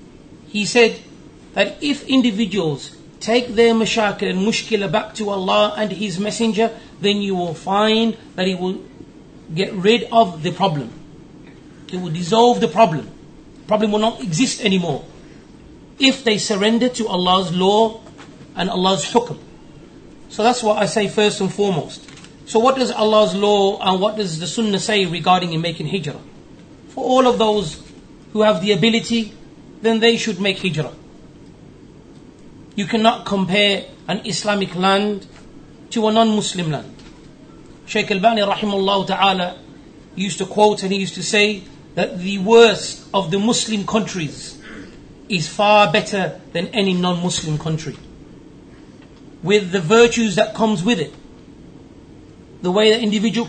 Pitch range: 185-225 Hz